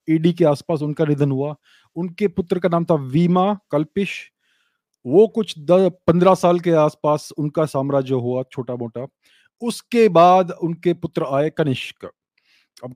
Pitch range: 150-185 Hz